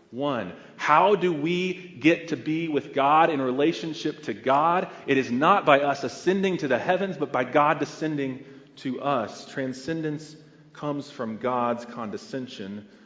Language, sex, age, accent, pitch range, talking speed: English, male, 40-59, American, 120-175 Hz, 150 wpm